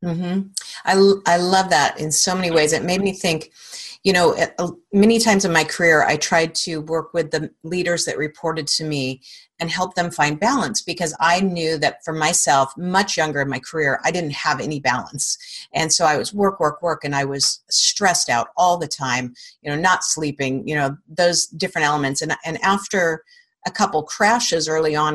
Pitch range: 155-200 Hz